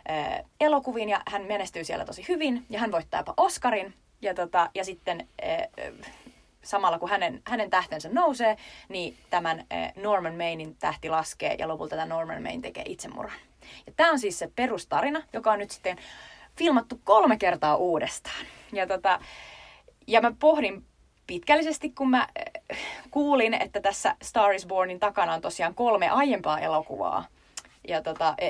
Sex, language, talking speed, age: female, Finnish, 160 wpm, 30-49